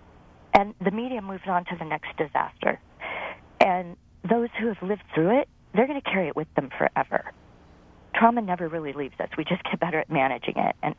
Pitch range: 155-195 Hz